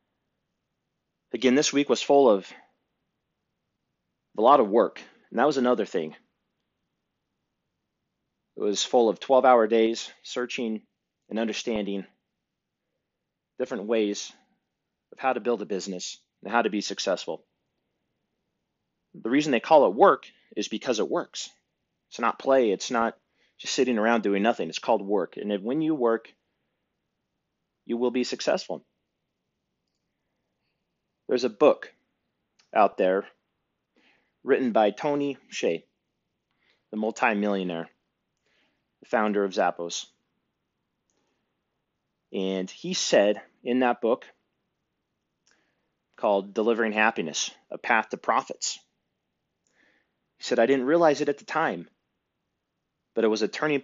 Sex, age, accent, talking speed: male, 30-49, American, 125 wpm